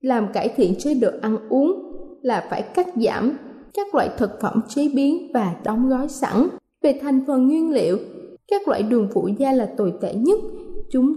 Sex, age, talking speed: female, 20-39, 195 wpm